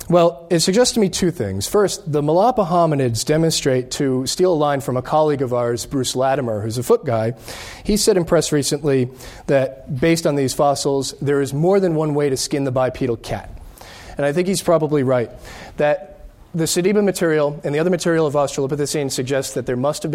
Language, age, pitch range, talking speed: English, 40-59, 125-160 Hz, 205 wpm